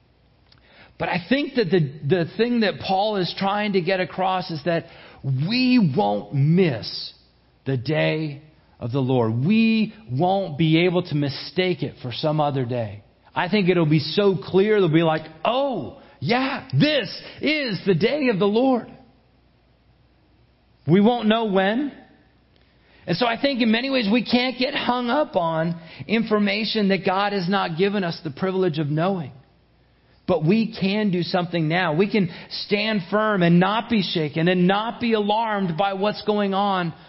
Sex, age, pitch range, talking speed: male, 40-59, 160-205 Hz, 165 wpm